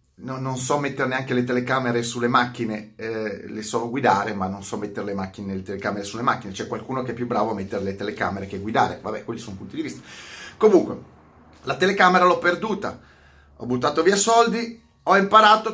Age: 30-49